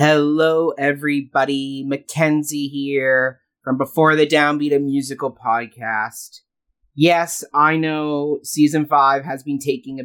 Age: 30-49